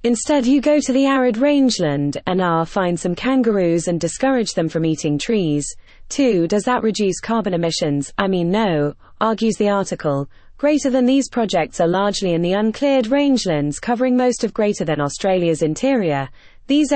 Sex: female